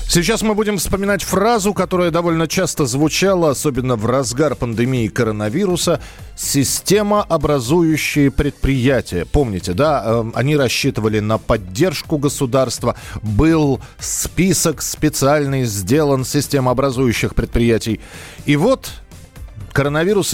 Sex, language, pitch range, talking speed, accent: male, Russian, 115-160 Hz, 95 wpm, native